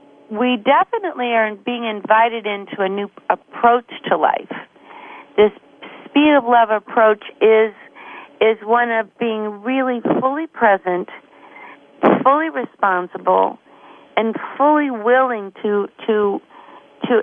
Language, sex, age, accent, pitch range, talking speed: English, female, 50-69, American, 210-245 Hz, 110 wpm